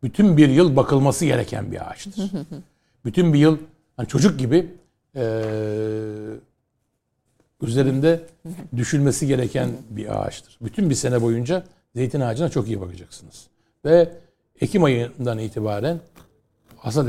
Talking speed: 115 wpm